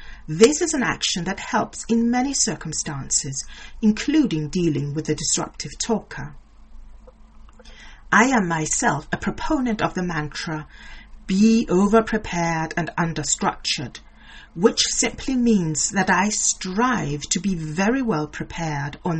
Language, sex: English, female